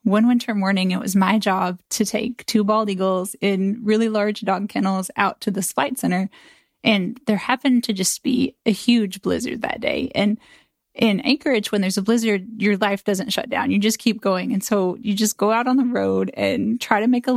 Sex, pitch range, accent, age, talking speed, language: female, 205-240 Hz, American, 10-29, 220 wpm, English